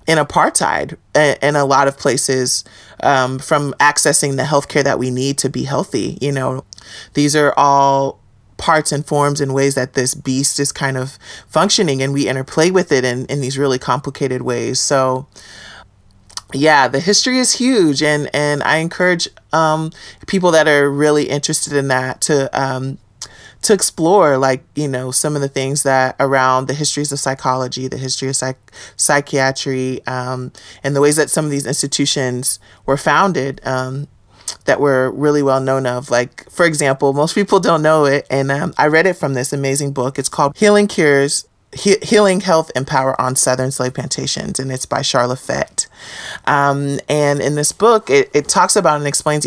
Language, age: English, 30-49